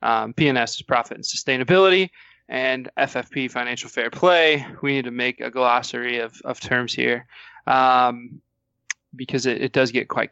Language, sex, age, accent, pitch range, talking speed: English, male, 20-39, American, 130-155 Hz, 165 wpm